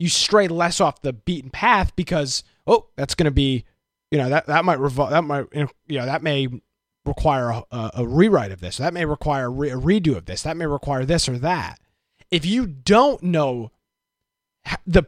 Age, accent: 20-39, American